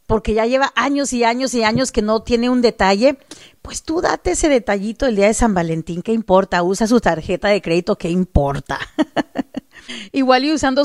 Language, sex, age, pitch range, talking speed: Spanish, female, 40-59, 205-255 Hz, 195 wpm